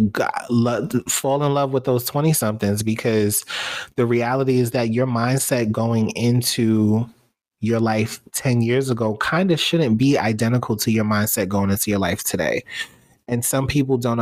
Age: 30-49